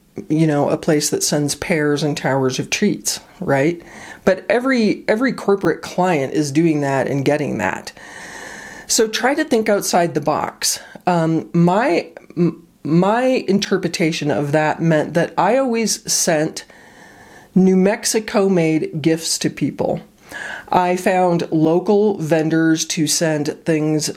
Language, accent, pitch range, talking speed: English, American, 155-195 Hz, 135 wpm